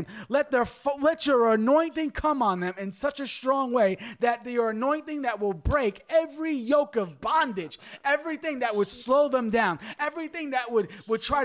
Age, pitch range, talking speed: 30-49, 215-290 Hz, 180 wpm